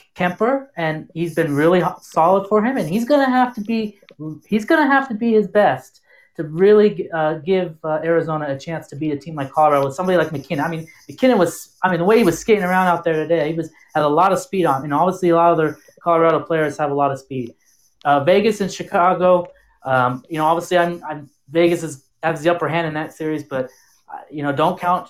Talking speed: 235 wpm